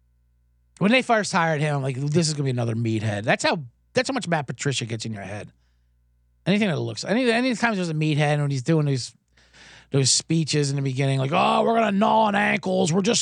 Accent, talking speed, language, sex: American, 230 wpm, English, male